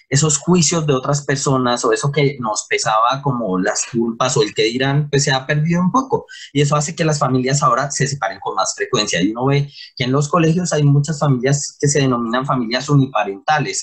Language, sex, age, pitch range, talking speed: Spanish, male, 20-39, 130-160 Hz, 215 wpm